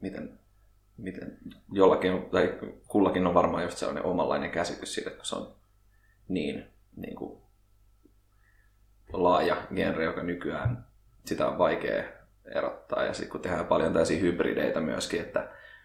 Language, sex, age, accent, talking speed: Finnish, male, 20-39, native, 120 wpm